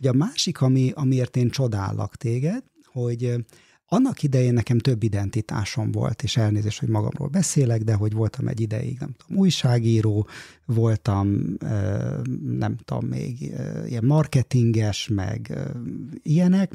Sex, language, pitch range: male, Hungarian, 110-135 Hz